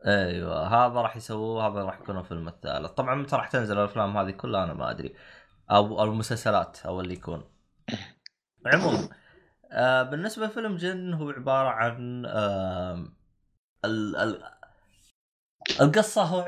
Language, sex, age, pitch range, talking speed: Arabic, male, 20-39, 100-130 Hz, 120 wpm